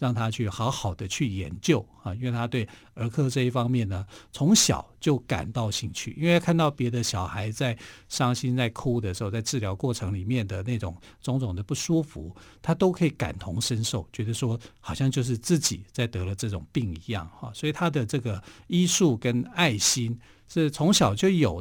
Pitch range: 105-135 Hz